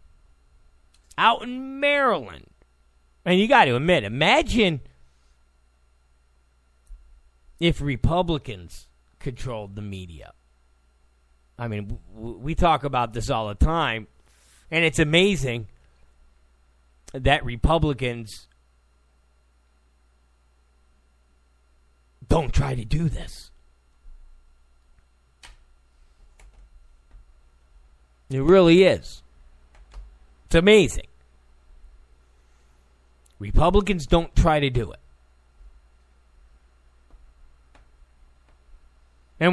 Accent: American